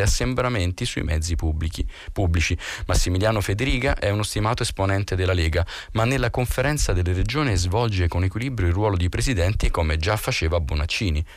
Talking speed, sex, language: 150 wpm, male, Italian